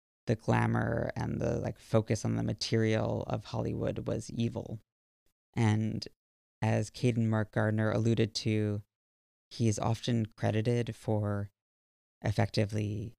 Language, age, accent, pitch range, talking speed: English, 20-39, American, 105-115 Hz, 120 wpm